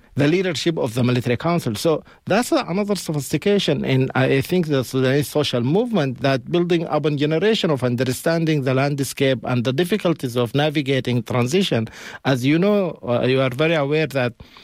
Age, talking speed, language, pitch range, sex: 50-69, 165 wpm, English, 125-165 Hz, male